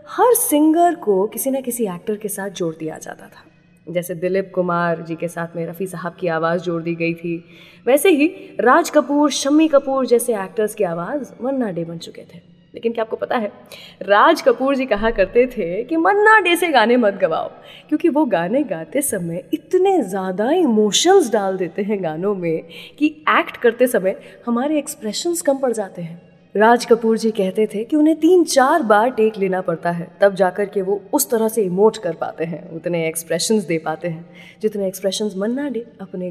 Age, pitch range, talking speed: 20-39, 175-270 Hz, 165 wpm